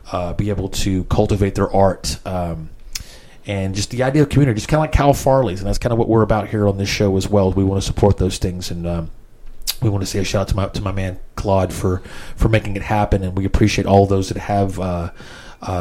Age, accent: 30-49, American